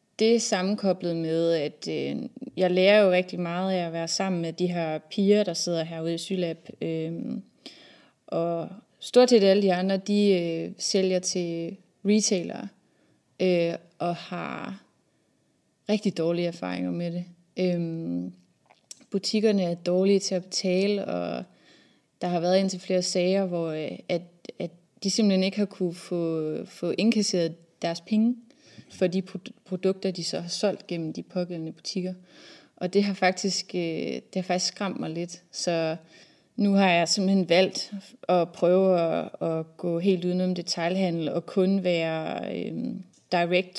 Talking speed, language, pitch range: 155 wpm, English, 170-195 Hz